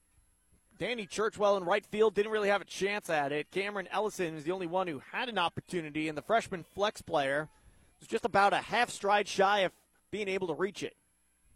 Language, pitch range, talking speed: English, 145-190 Hz, 210 wpm